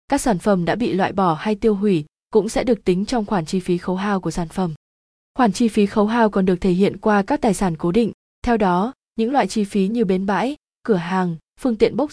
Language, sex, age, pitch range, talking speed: Vietnamese, female, 20-39, 185-225 Hz, 255 wpm